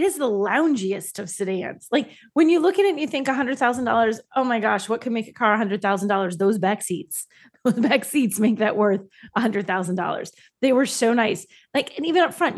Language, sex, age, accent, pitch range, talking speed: English, female, 30-49, American, 200-275 Hz, 210 wpm